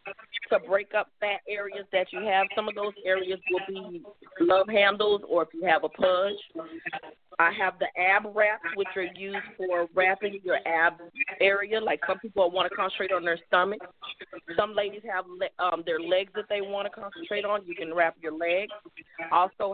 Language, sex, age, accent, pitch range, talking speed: English, female, 40-59, American, 185-220 Hz, 190 wpm